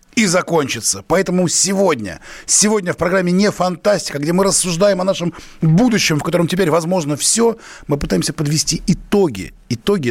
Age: 30-49